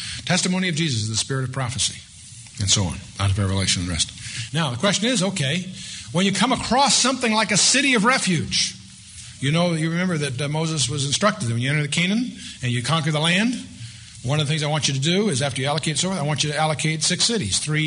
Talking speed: 255 wpm